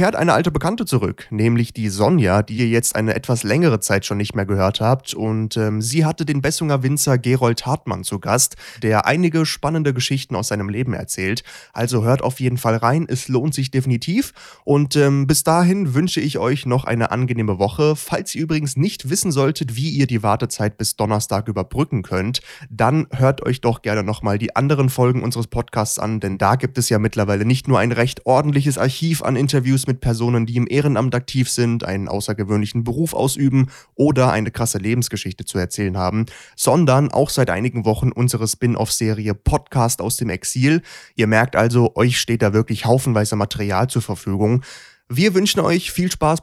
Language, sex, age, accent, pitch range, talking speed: German, male, 30-49, German, 110-140 Hz, 185 wpm